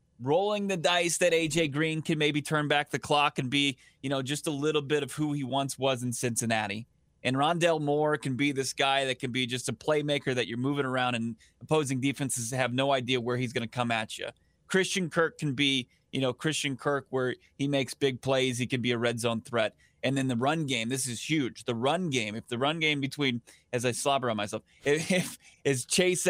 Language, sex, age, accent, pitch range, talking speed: English, male, 20-39, American, 130-155 Hz, 235 wpm